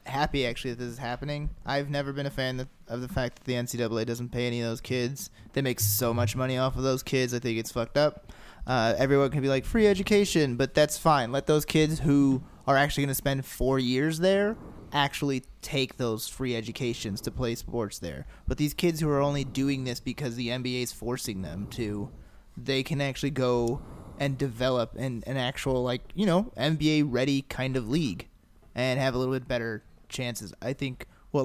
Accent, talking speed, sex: American, 210 wpm, male